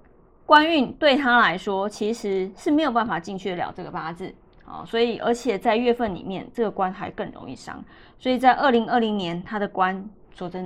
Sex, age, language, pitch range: female, 20-39, Chinese, 195-265 Hz